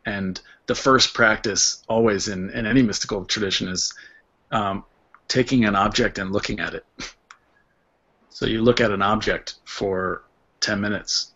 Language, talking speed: English, 150 wpm